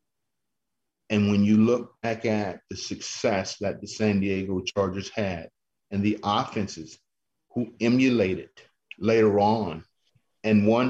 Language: English